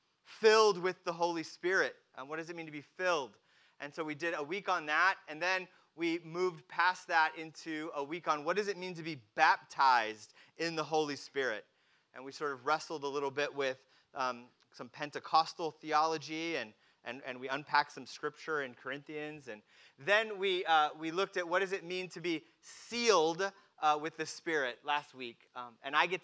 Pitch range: 135-175 Hz